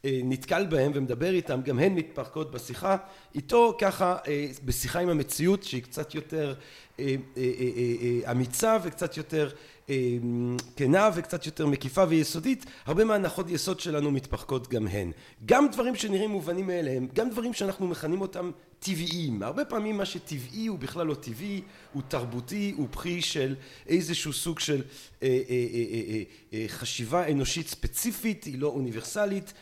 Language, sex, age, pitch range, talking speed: Hebrew, male, 40-59, 130-185 Hz, 155 wpm